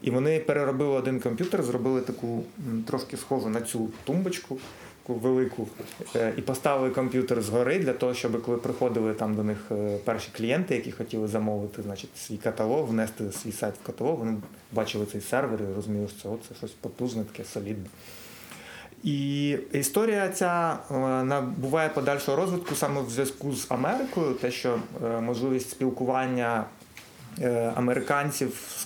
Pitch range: 115-140 Hz